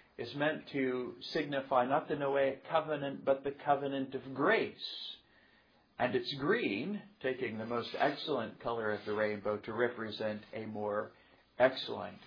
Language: English